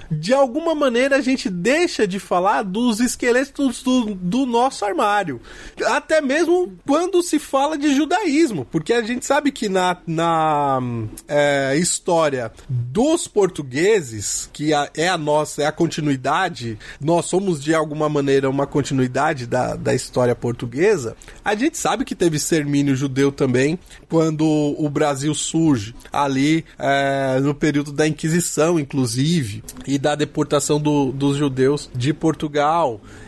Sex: male